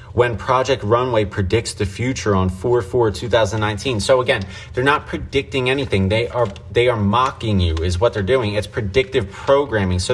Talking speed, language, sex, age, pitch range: 170 wpm, English, male, 20-39, 105-130 Hz